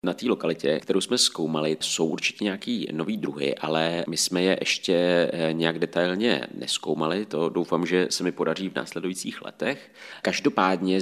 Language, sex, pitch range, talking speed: Czech, male, 90-105 Hz, 160 wpm